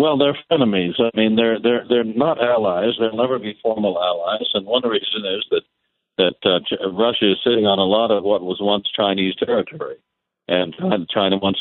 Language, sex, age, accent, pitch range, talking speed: English, male, 50-69, American, 95-125 Hz, 195 wpm